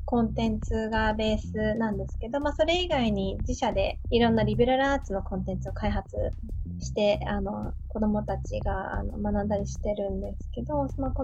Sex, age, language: female, 20-39, Japanese